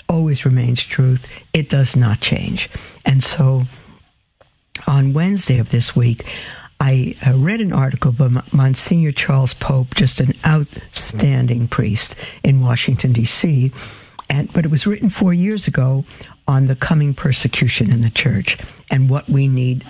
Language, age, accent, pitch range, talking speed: English, 60-79, American, 125-160 Hz, 145 wpm